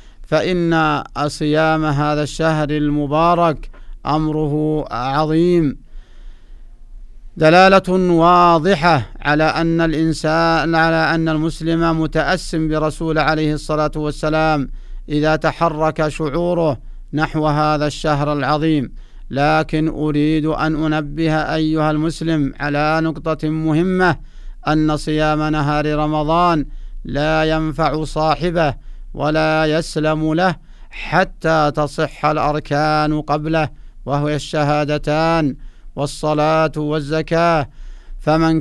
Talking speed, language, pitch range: 85 wpm, Arabic, 150-160 Hz